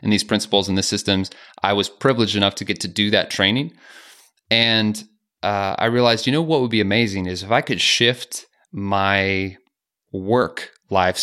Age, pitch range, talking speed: 30-49, 100-115 Hz, 180 wpm